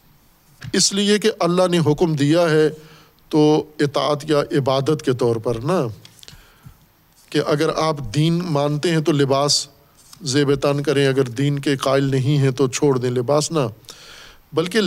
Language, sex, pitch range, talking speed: Urdu, male, 135-155 Hz, 155 wpm